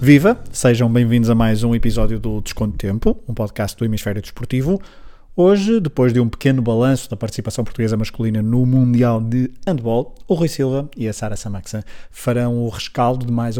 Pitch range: 115-135 Hz